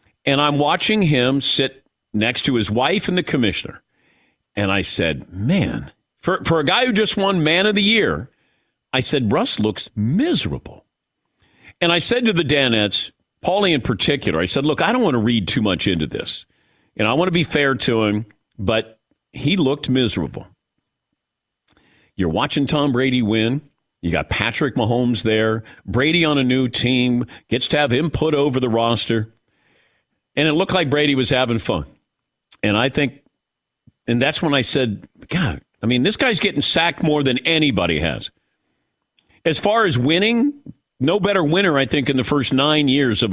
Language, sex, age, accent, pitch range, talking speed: English, male, 50-69, American, 115-155 Hz, 180 wpm